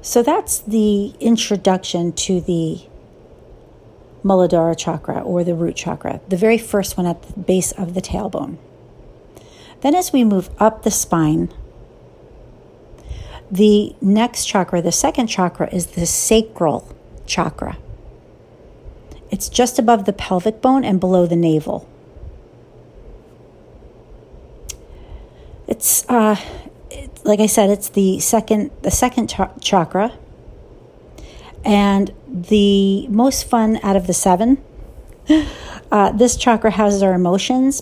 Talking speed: 120 wpm